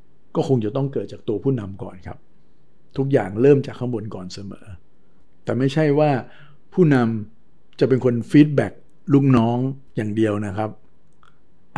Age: 60-79